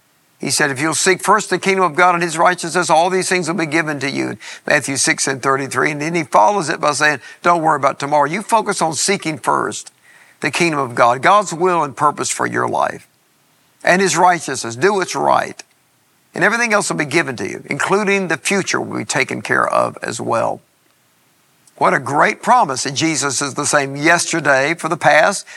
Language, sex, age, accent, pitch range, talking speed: English, male, 50-69, American, 140-180 Hz, 210 wpm